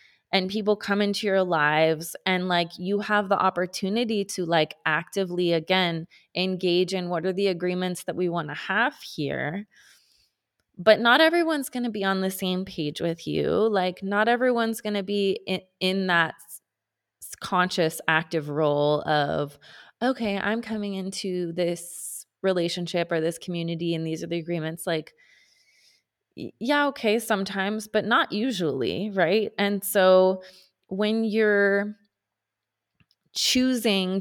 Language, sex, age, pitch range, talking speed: English, female, 20-39, 160-200 Hz, 140 wpm